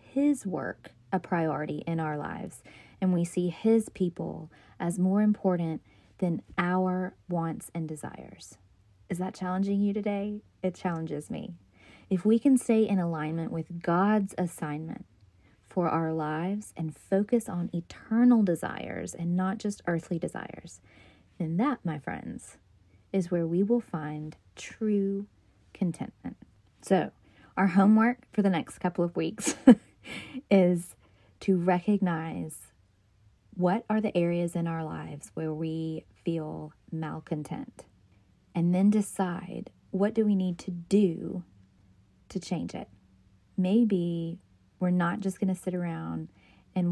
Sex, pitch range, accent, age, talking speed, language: female, 155-190 Hz, American, 20-39, 135 wpm, English